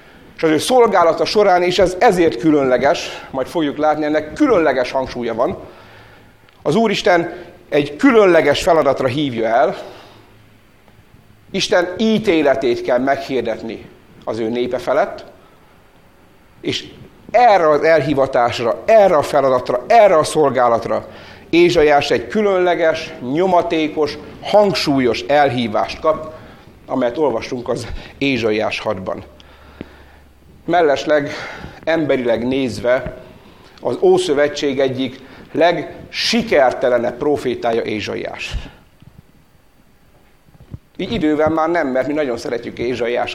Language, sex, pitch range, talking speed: Hungarian, male, 125-175 Hz, 100 wpm